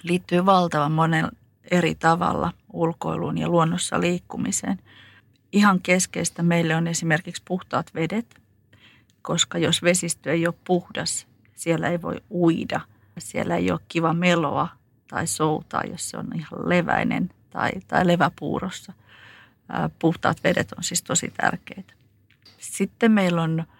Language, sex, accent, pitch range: Finnish, female, native, 150-180 Hz